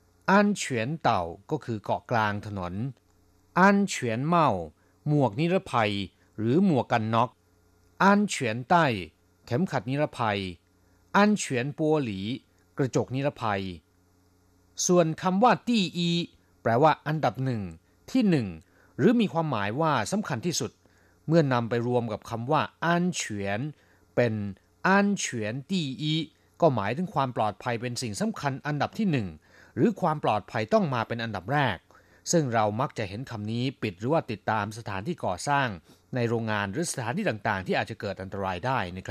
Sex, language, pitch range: male, Thai, 95-150 Hz